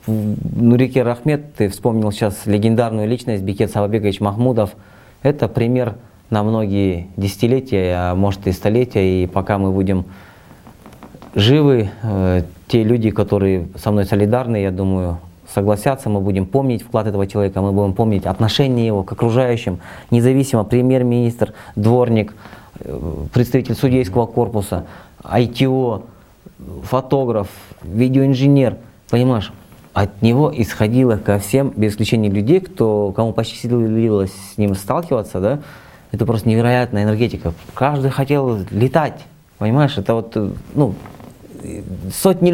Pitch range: 100-125 Hz